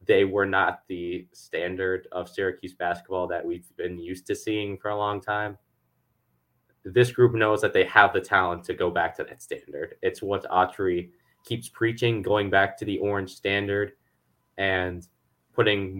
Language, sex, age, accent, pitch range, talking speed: English, male, 20-39, American, 90-115 Hz, 170 wpm